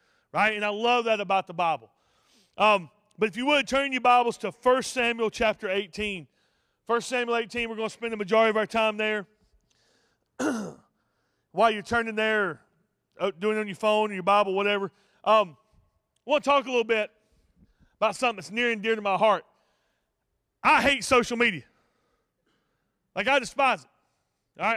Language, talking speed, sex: English, 175 wpm, male